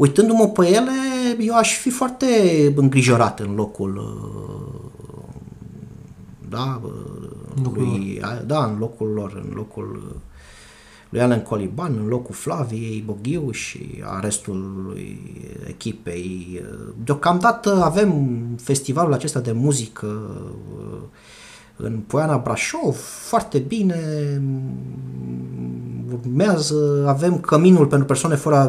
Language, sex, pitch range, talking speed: Romanian, male, 115-155 Hz, 90 wpm